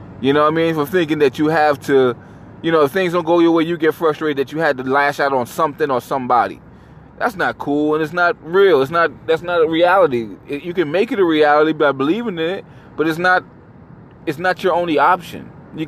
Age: 20-39